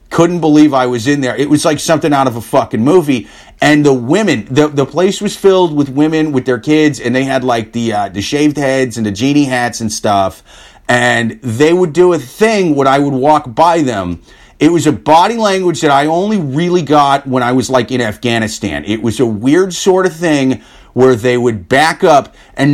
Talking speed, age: 220 wpm, 30-49